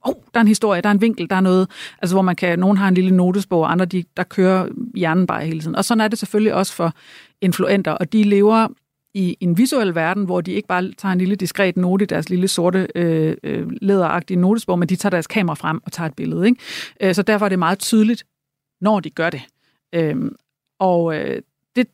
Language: Danish